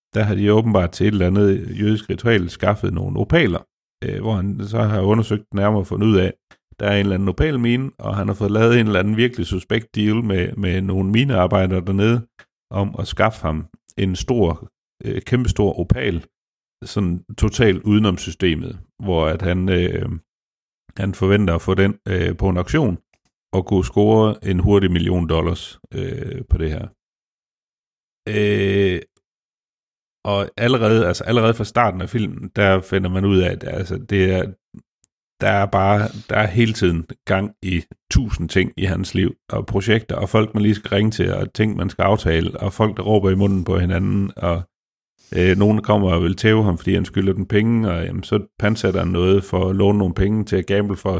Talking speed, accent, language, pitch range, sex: 195 wpm, native, Danish, 95-110 Hz, male